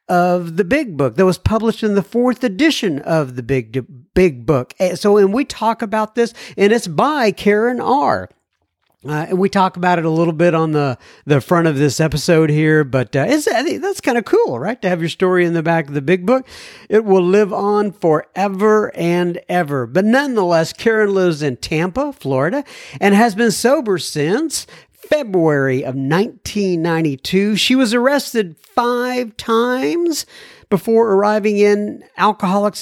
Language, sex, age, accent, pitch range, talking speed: English, male, 50-69, American, 155-215 Hz, 175 wpm